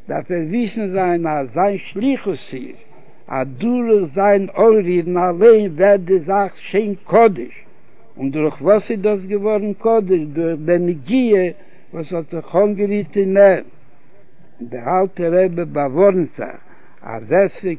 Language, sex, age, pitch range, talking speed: Hebrew, male, 60-79, 155-200 Hz, 85 wpm